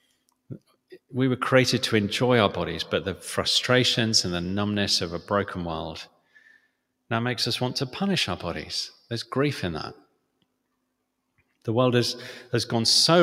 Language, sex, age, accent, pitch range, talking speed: English, male, 40-59, British, 95-125 Hz, 160 wpm